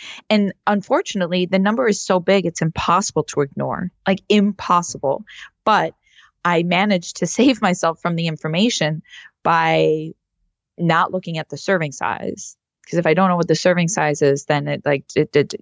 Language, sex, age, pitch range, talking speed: English, female, 20-39, 145-185 Hz, 170 wpm